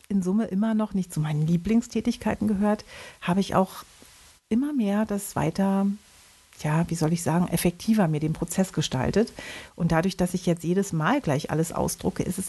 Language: German